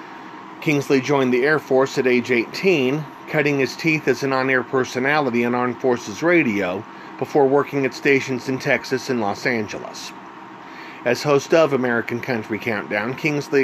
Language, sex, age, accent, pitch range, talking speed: English, male, 40-59, American, 120-145 Hz, 155 wpm